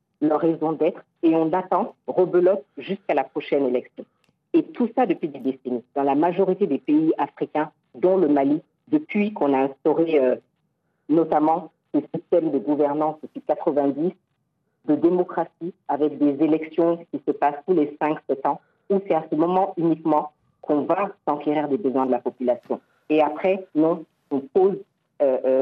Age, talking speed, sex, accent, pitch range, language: 50-69, 165 wpm, female, French, 145-180 Hz, French